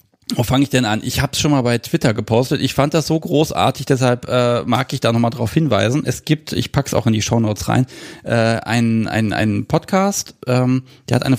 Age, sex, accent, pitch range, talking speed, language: 40-59, male, German, 115-140 Hz, 225 wpm, German